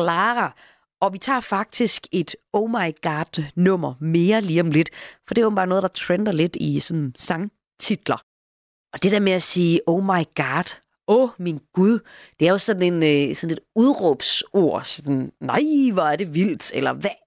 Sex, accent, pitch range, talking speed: female, native, 150-210 Hz, 185 wpm